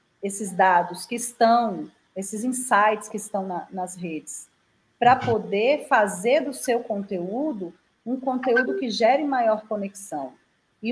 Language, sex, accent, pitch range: Portuguese, female, Brazilian, 200-260 Hz